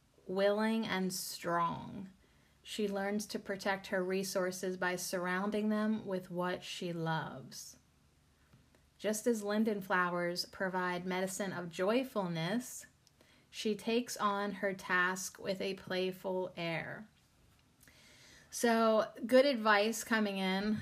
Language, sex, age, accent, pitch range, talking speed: English, female, 30-49, American, 180-210 Hz, 110 wpm